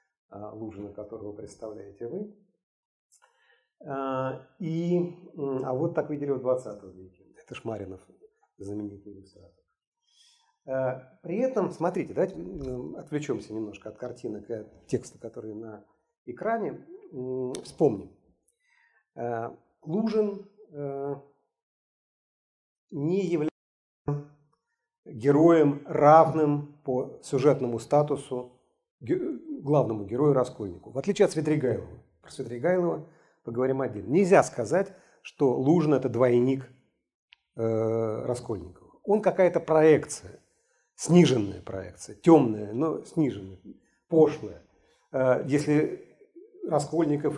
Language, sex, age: Russian, male, 40-59